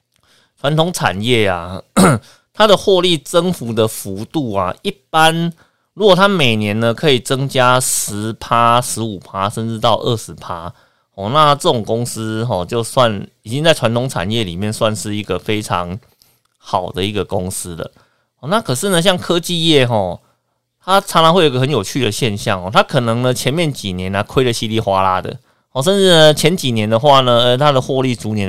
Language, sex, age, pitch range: Chinese, male, 30-49, 105-150 Hz